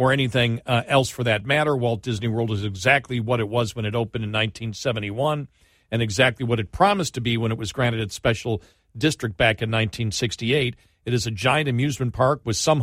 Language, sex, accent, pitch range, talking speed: English, male, American, 105-125 Hz, 210 wpm